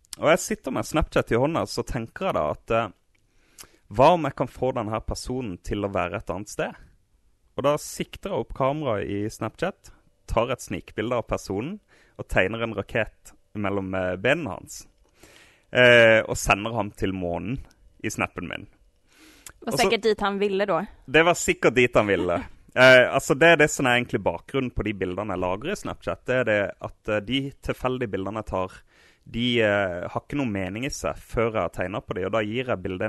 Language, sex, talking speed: Swedish, male, 190 wpm